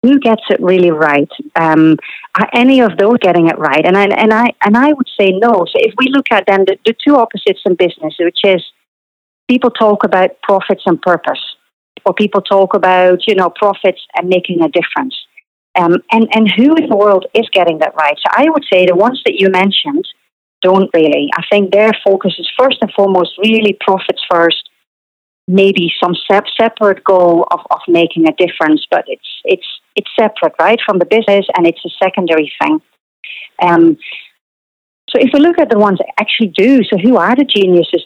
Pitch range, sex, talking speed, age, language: 175-230 Hz, female, 195 wpm, 40-59, English